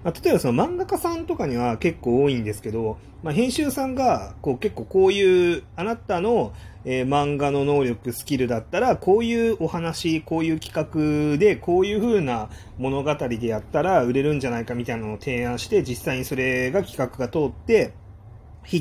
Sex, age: male, 30-49